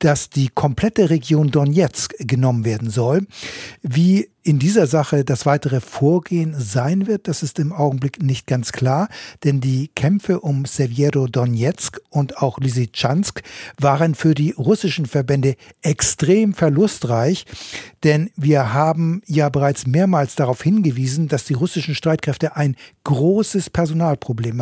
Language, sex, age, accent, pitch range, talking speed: German, male, 60-79, German, 140-180 Hz, 135 wpm